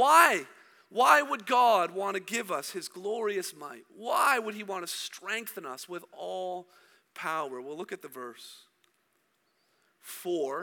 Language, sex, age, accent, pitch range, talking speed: English, male, 40-59, American, 180-235 Hz, 150 wpm